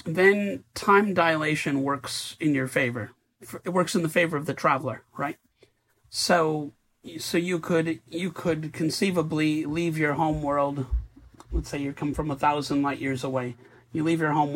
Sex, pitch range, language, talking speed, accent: male, 140-170 Hz, English, 170 wpm, American